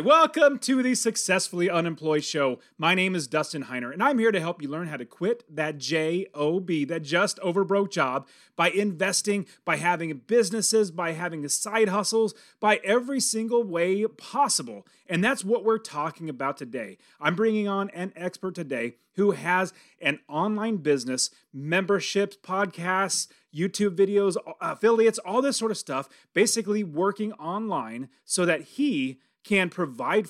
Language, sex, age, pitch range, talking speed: English, male, 30-49, 150-205 Hz, 155 wpm